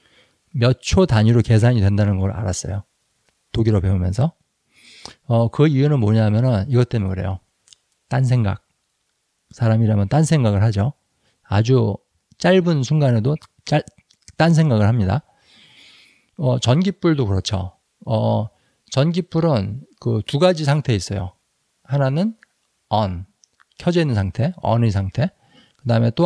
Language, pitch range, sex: Korean, 105-140 Hz, male